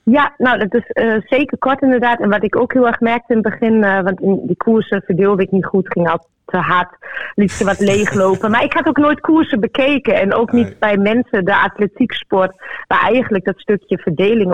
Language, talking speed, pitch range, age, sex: Dutch, 225 wpm, 190-230 Hz, 30-49, female